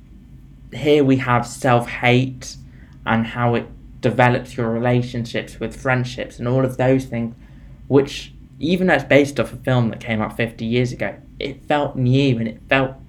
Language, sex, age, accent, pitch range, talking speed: English, male, 20-39, British, 115-130 Hz, 170 wpm